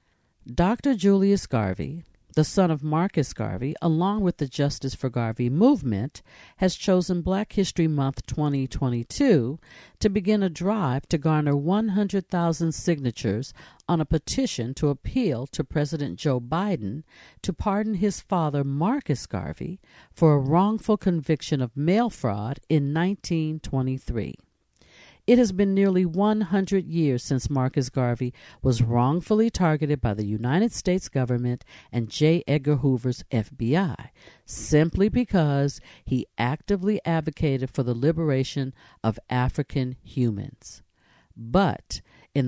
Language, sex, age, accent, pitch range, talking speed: English, female, 50-69, American, 125-185 Hz, 125 wpm